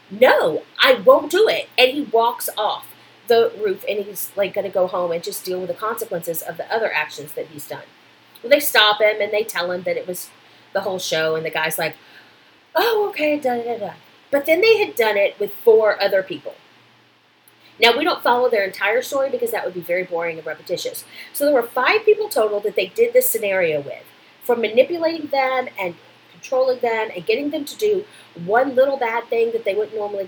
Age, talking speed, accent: 30-49, 215 wpm, American